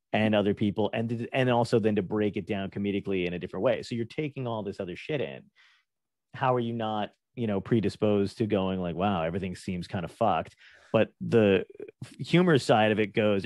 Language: English